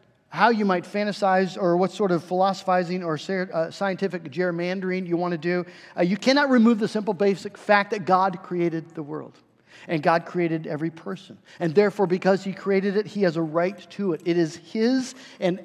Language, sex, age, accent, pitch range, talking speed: English, male, 50-69, American, 180-245 Hz, 190 wpm